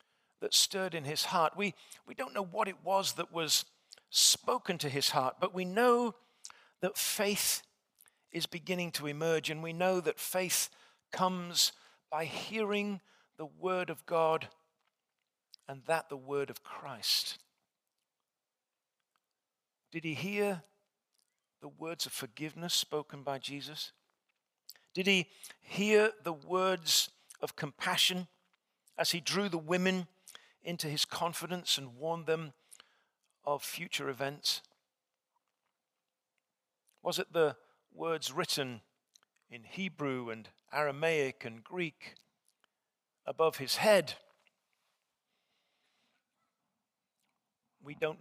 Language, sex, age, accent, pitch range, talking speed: English, male, 50-69, British, 145-185 Hz, 115 wpm